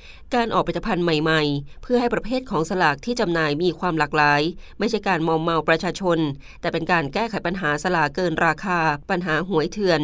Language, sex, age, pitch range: Thai, female, 20-39, 160-210 Hz